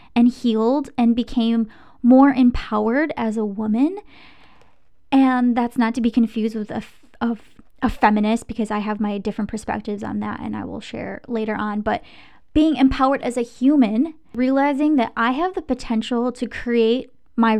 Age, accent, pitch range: 20-39, American, 230-270 Hz